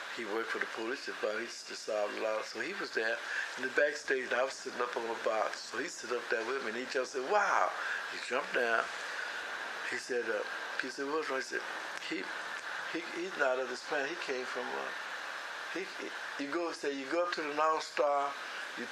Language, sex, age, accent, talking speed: English, male, 60-79, American, 225 wpm